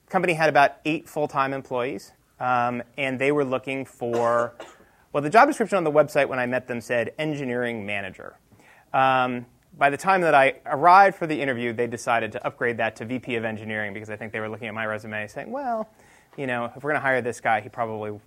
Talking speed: 220 wpm